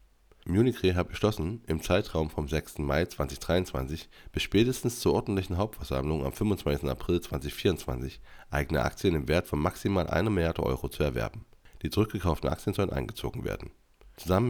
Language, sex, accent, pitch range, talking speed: German, male, German, 75-105 Hz, 150 wpm